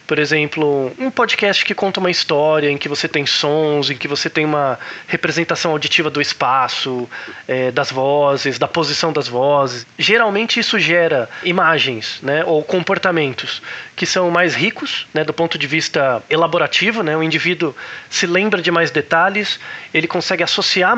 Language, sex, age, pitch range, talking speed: Portuguese, male, 20-39, 160-210 Hz, 165 wpm